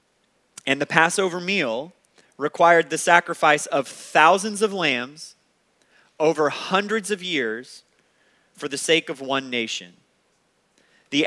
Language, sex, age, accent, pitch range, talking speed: English, male, 30-49, American, 145-190 Hz, 115 wpm